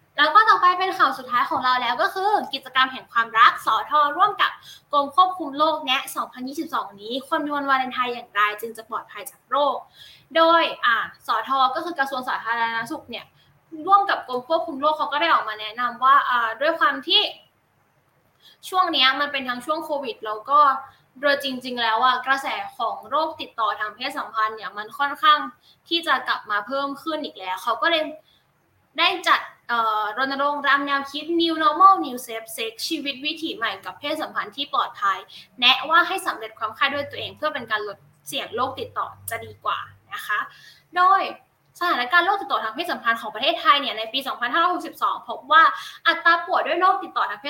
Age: 10-29